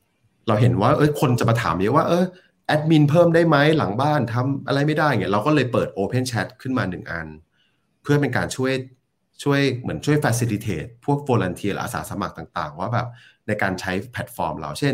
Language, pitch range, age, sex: Thai, 100-130 Hz, 30-49, male